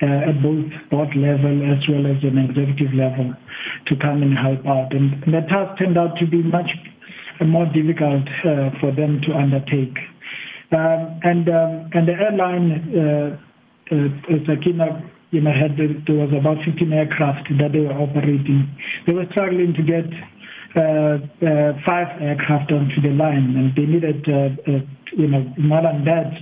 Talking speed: 170 wpm